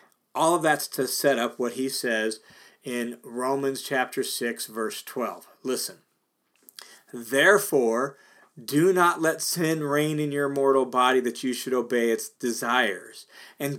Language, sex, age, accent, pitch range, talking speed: English, male, 40-59, American, 130-175 Hz, 145 wpm